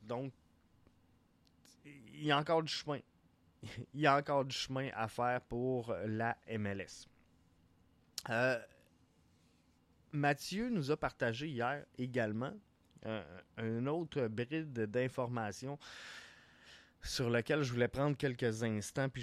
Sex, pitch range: male, 105-135 Hz